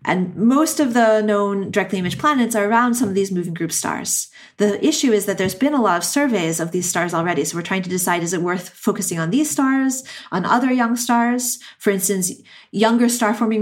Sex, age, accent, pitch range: female, 30-49, American, 180-230 Hz